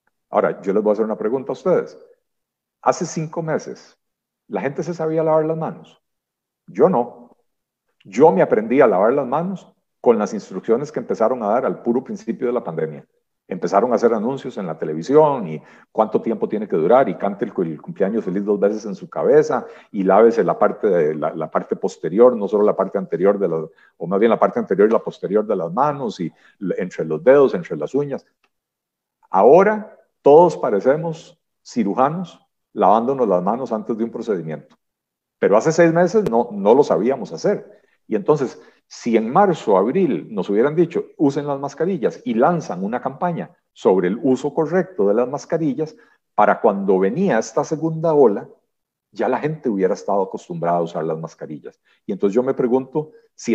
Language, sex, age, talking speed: Spanish, male, 50-69, 185 wpm